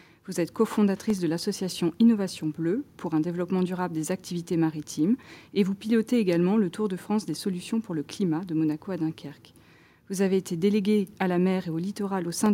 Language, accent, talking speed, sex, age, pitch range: French, French, 205 wpm, female, 30-49, 170-210 Hz